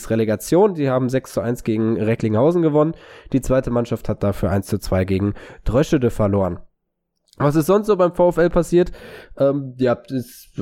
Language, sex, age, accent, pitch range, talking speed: German, male, 20-39, German, 115-145 Hz, 165 wpm